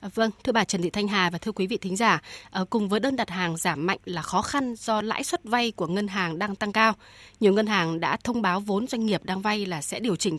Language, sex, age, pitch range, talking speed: Vietnamese, female, 20-39, 190-230 Hz, 275 wpm